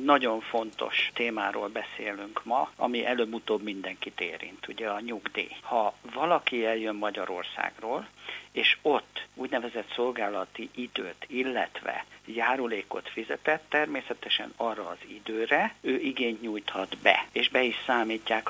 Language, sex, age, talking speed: Hungarian, male, 60-79, 115 wpm